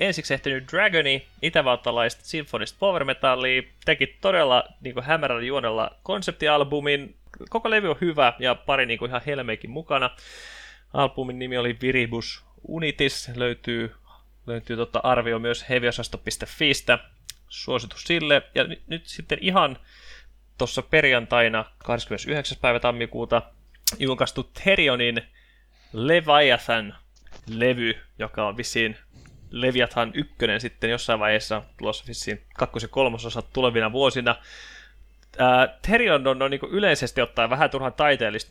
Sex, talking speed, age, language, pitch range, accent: male, 110 wpm, 20-39, Finnish, 115-145 Hz, native